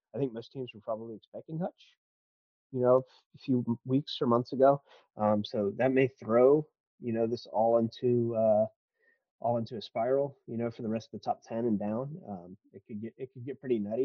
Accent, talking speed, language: American, 220 wpm, English